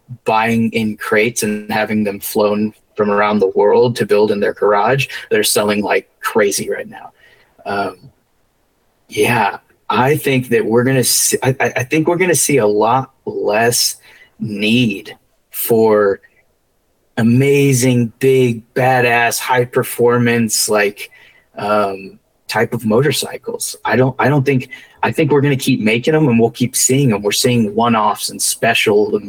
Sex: male